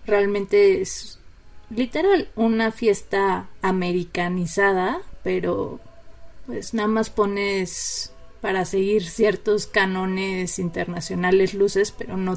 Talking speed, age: 90 wpm, 30-49